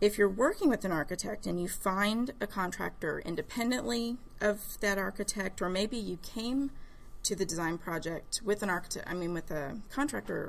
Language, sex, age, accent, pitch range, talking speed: English, female, 30-49, American, 175-215 Hz, 175 wpm